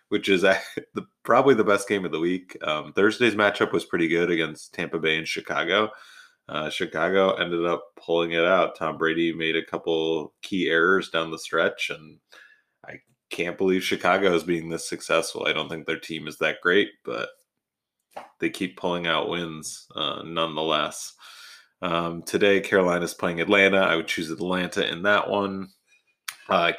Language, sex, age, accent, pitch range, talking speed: English, male, 30-49, American, 80-95 Hz, 170 wpm